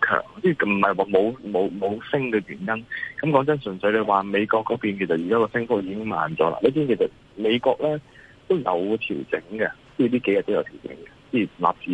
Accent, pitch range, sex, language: native, 100-135 Hz, male, Chinese